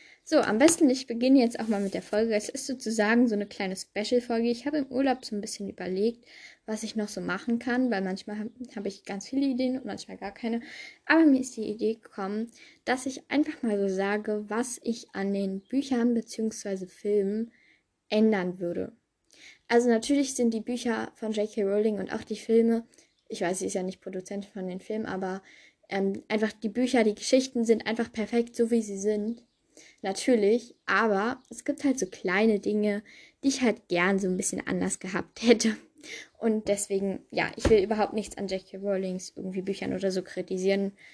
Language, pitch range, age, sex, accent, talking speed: German, 200-245 Hz, 10-29, female, German, 195 wpm